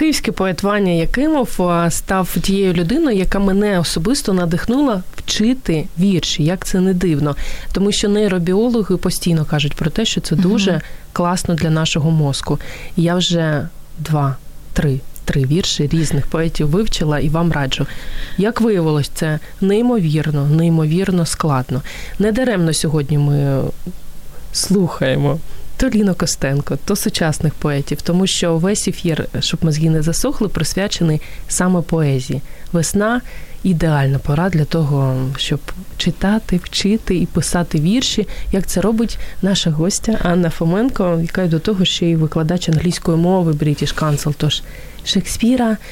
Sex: female